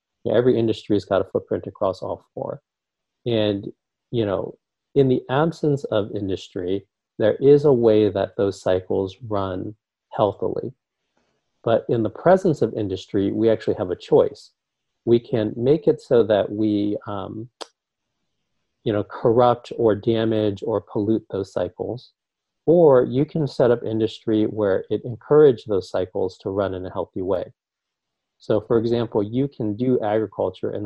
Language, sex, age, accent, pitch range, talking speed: English, male, 40-59, American, 100-120 Hz, 155 wpm